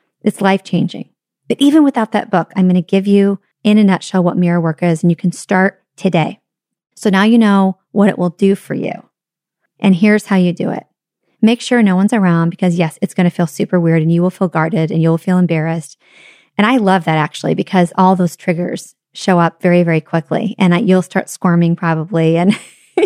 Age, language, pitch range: 30-49, English, 170-200 Hz